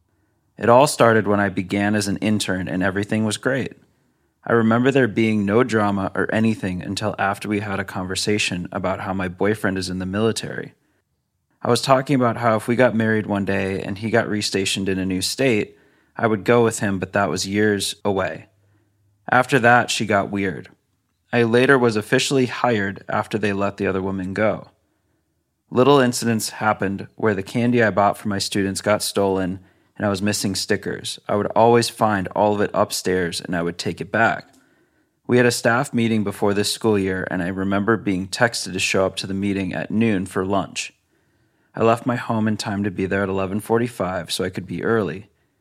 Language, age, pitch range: English, 30-49, 95-115 Hz